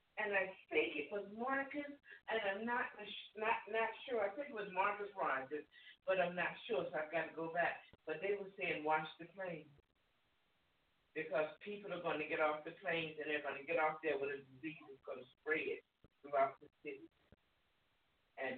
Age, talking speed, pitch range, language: 50-69, 200 wpm, 140-190 Hz, English